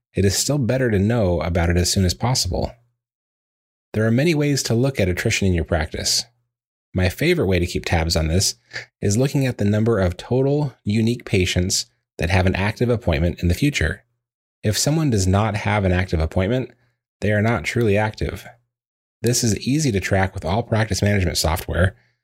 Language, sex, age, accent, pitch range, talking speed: English, male, 30-49, American, 90-120 Hz, 190 wpm